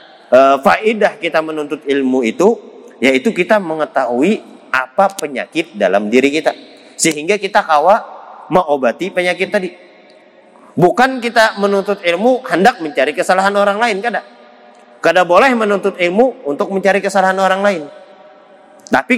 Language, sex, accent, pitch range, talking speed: Indonesian, male, native, 150-210 Hz, 120 wpm